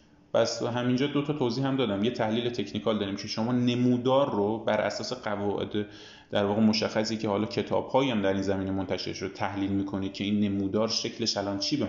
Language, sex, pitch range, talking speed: Persian, male, 100-130 Hz, 195 wpm